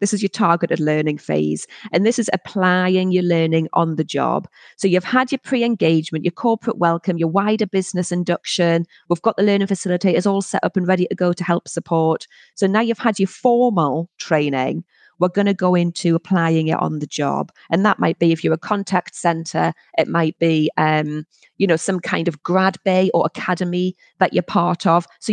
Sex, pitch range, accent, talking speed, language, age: female, 165-205 Hz, British, 205 wpm, English, 30-49